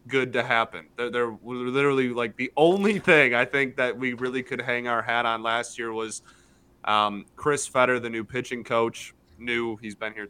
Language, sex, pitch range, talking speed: English, male, 110-130 Hz, 200 wpm